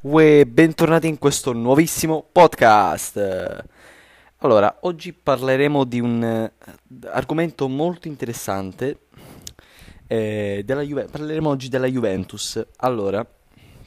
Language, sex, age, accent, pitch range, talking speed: Italian, male, 20-39, native, 95-130 Hz, 80 wpm